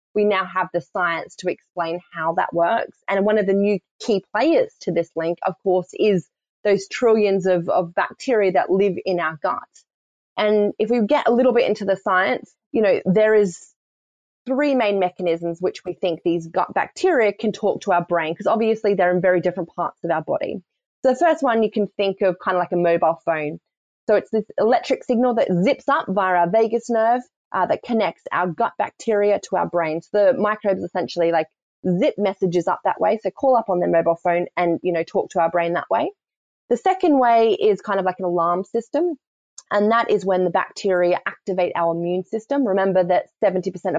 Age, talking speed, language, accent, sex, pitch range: 20-39, 210 wpm, English, Australian, female, 175-220 Hz